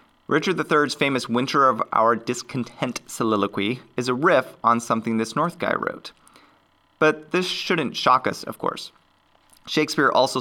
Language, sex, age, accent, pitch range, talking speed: English, male, 30-49, American, 110-135 Hz, 150 wpm